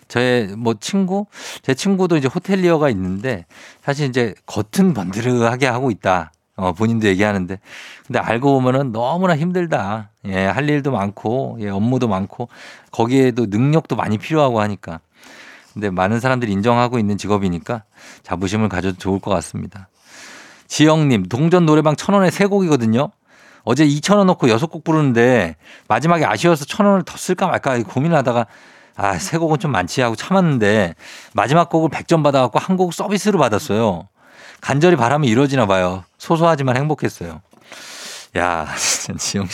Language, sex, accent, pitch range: Korean, male, native, 105-160 Hz